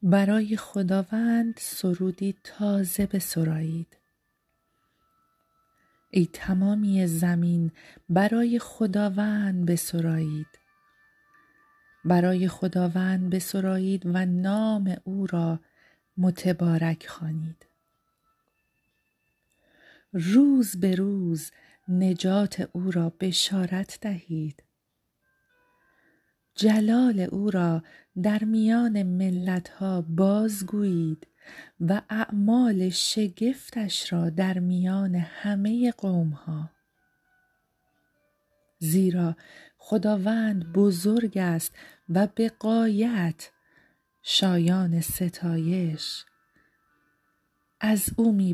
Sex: female